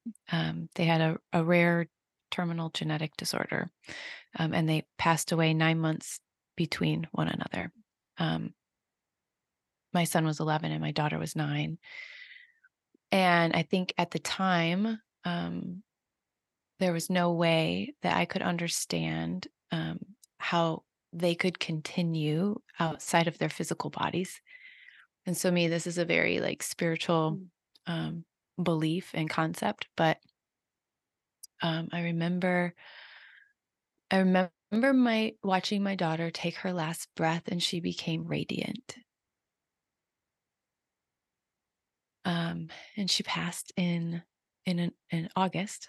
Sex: female